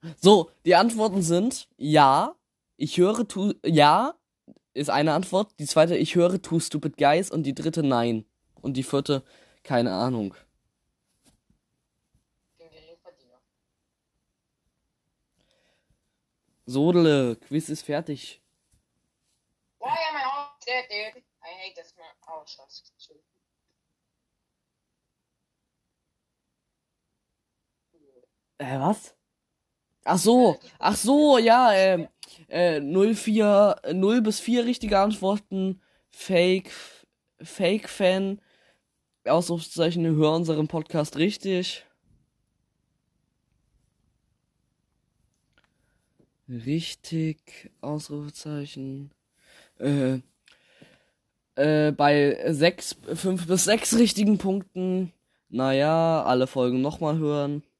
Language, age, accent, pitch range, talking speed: German, 20-39, German, 145-195 Hz, 75 wpm